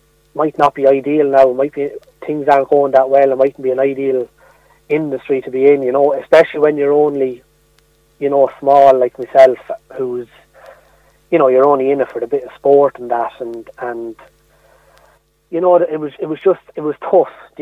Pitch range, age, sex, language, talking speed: 125-145 Hz, 30-49, male, English, 200 wpm